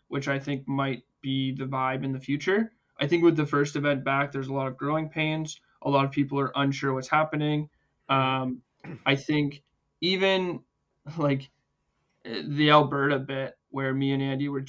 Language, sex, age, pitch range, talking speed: English, male, 20-39, 135-145 Hz, 180 wpm